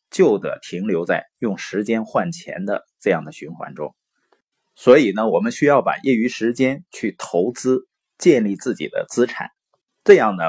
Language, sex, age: Chinese, male, 30-49